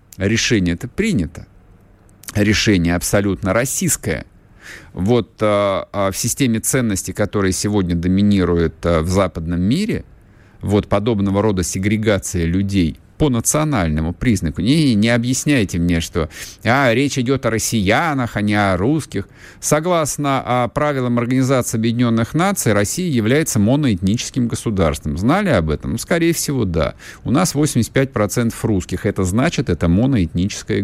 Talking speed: 125 wpm